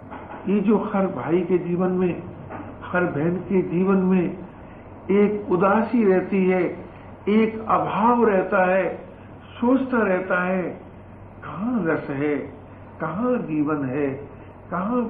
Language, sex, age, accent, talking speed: Hindi, male, 60-79, native, 120 wpm